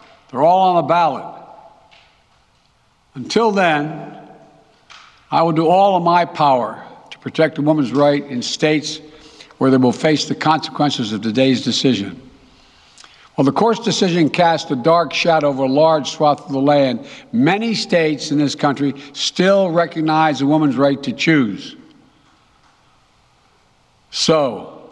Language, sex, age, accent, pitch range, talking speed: English, male, 60-79, American, 140-175 Hz, 140 wpm